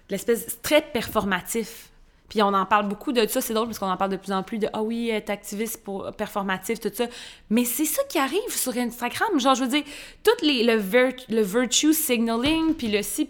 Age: 20-39